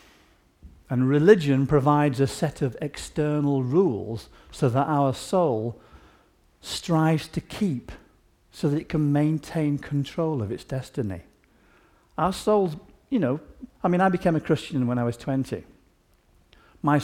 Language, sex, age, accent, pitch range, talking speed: English, male, 50-69, British, 115-150 Hz, 135 wpm